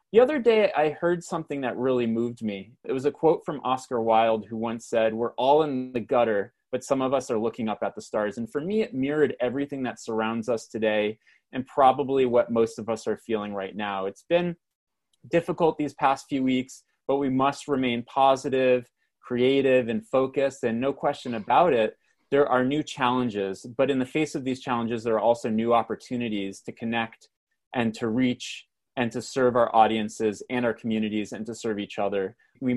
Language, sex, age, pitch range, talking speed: English, male, 30-49, 115-140 Hz, 200 wpm